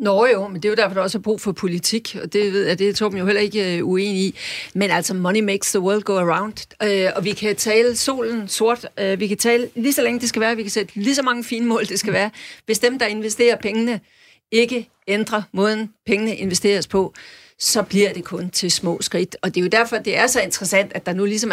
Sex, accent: female, native